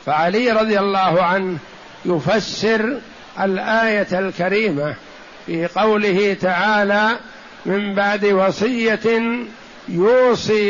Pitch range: 195-225 Hz